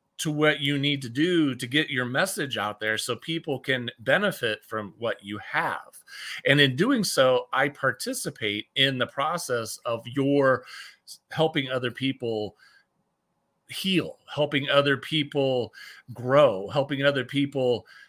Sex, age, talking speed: male, 40-59, 140 wpm